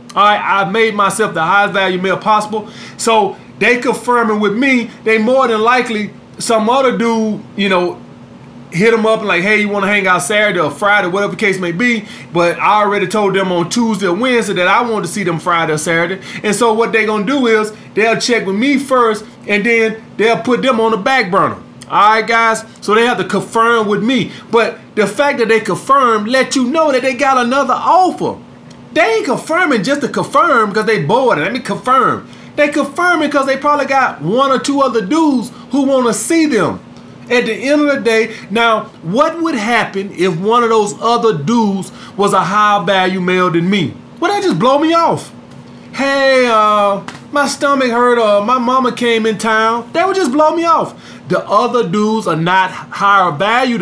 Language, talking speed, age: English, 210 wpm, 20-39